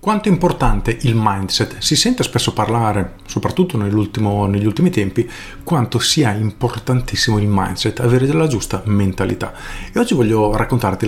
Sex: male